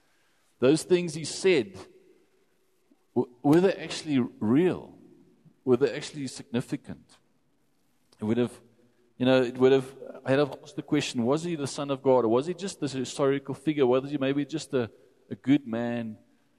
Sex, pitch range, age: male, 105-140 Hz, 40-59